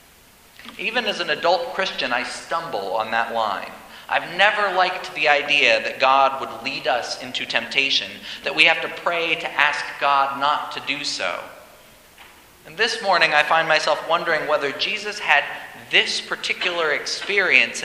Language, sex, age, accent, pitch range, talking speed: English, male, 40-59, American, 145-200 Hz, 160 wpm